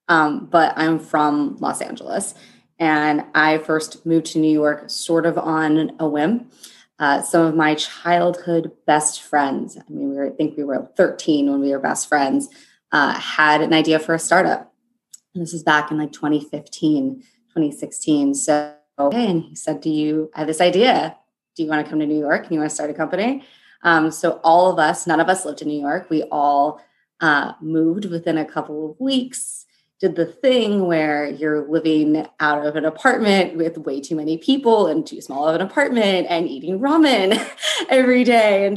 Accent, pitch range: American, 155-185 Hz